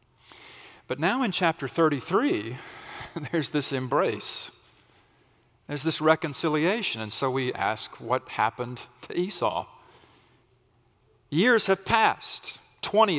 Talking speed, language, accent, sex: 105 wpm, English, American, male